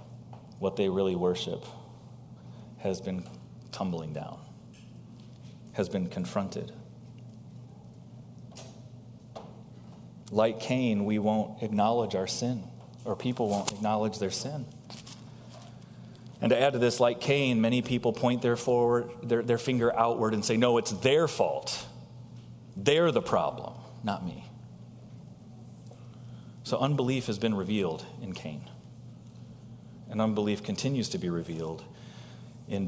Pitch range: 100-130 Hz